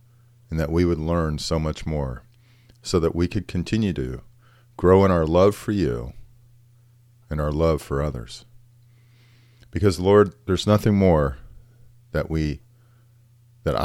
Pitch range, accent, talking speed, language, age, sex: 80-120 Hz, American, 145 wpm, English, 40-59, male